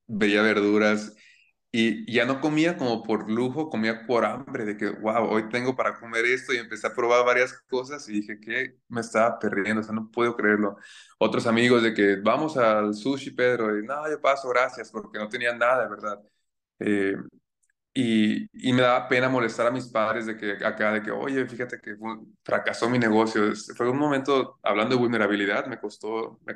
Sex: male